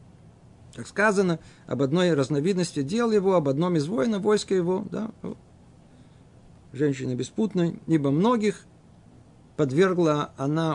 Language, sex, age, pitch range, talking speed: Russian, male, 50-69, 130-175 Hz, 110 wpm